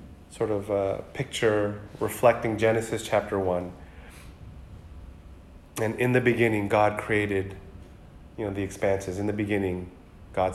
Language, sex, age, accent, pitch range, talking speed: English, male, 30-49, American, 90-120 Hz, 125 wpm